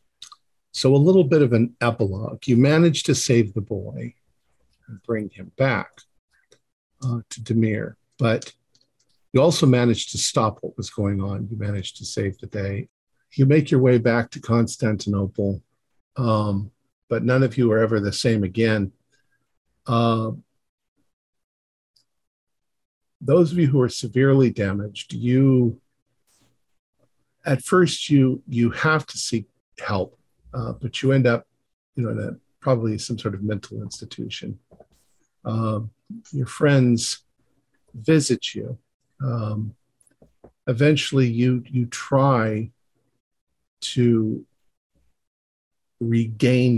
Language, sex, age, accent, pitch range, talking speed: English, male, 50-69, American, 105-130 Hz, 125 wpm